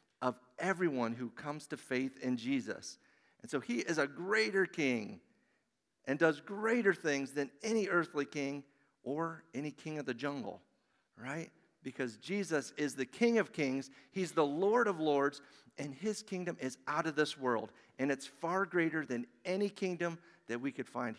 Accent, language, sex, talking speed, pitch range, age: American, English, male, 175 wpm, 130-170 Hz, 50-69